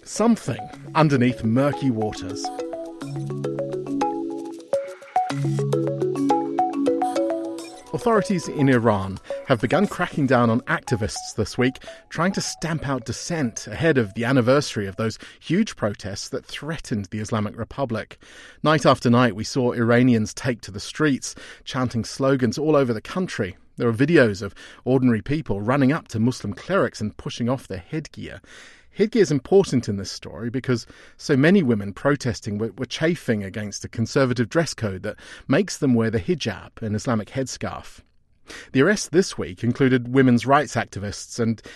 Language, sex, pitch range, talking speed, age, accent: English, male, 110-155 Hz, 145 wpm, 40-59, British